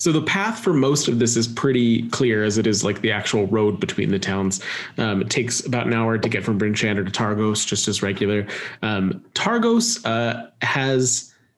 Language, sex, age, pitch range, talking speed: English, male, 30-49, 105-130 Hz, 200 wpm